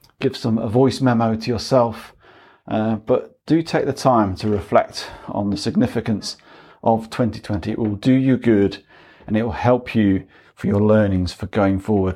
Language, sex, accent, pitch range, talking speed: English, male, British, 105-130 Hz, 175 wpm